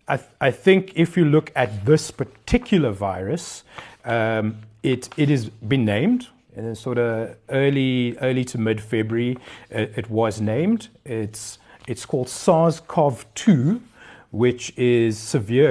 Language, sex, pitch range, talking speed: English, male, 110-140 Hz, 140 wpm